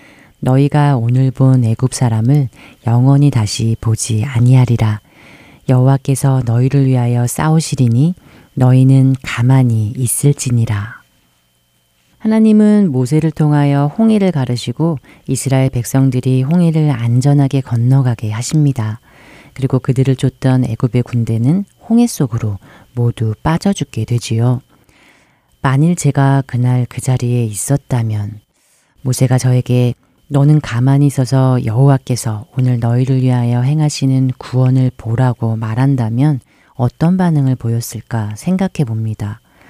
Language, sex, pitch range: Korean, female, 120-140 Hz